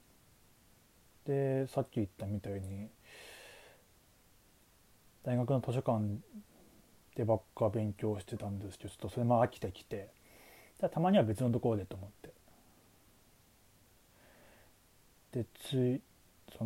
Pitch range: 105-145 Hz